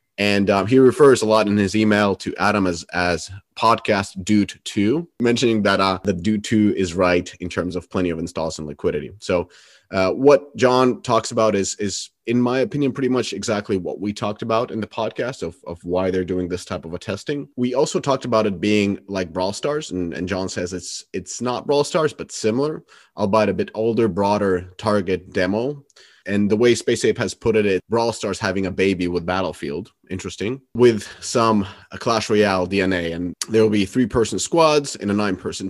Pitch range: 95-120 Hz